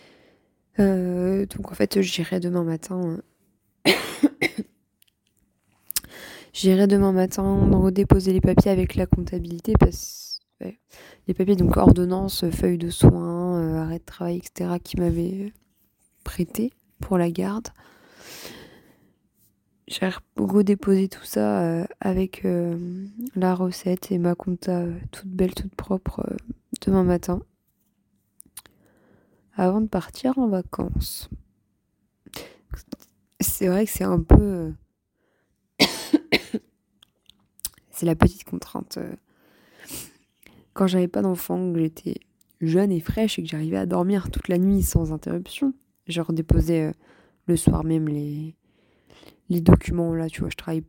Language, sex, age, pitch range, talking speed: French, female, 20-39, 170-195 Hz, 115 wpm